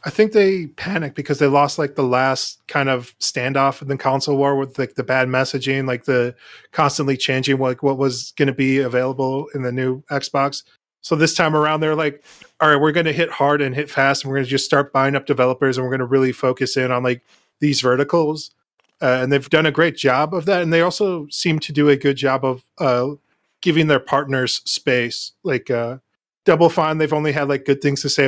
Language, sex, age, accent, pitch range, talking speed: English, male, 20-39, American, 135-155 Hz, 230 wpm